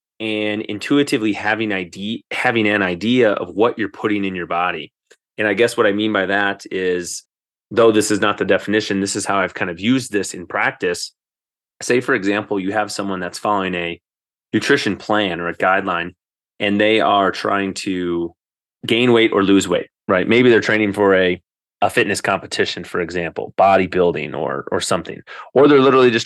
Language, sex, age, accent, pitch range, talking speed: English, male, 30-49, American, 95-110 Hz, 185 wpm